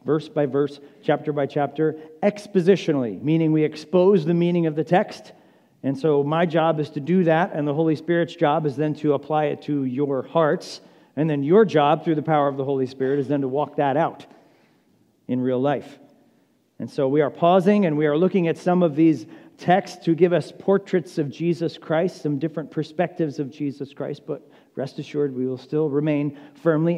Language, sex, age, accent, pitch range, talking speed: English, male, 40-59, American, 140-165 Hz, 200 wpm